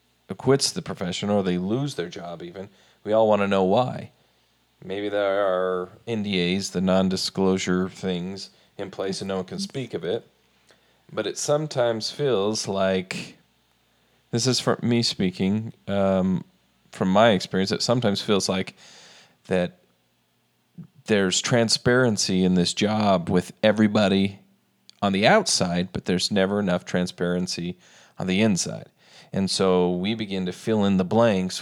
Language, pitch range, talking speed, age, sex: English, 90-115 Hz, 145 wpm, 40-59, male